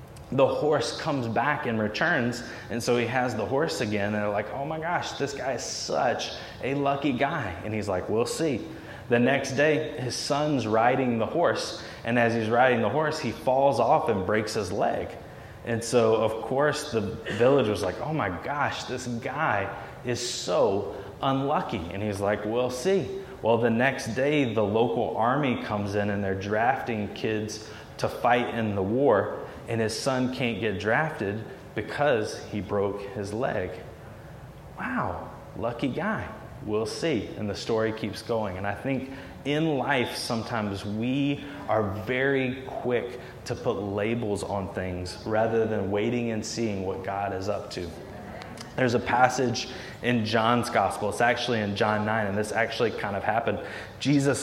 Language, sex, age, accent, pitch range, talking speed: English, male, 20-39, American, 105-130 Hz, 170 wpm